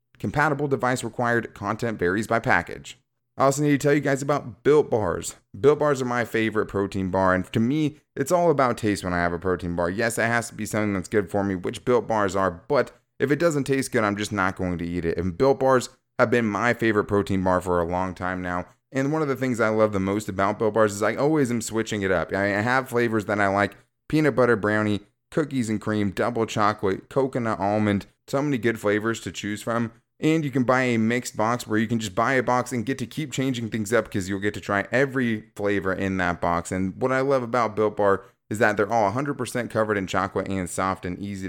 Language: English